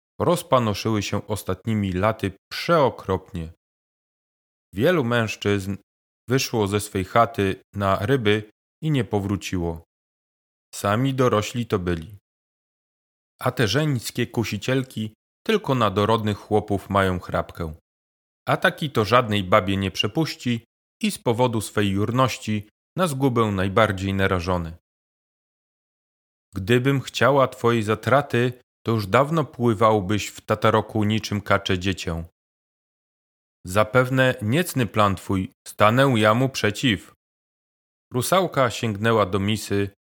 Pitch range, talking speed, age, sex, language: 95-120 Hz, 105 wpm, 30-49, male, Polish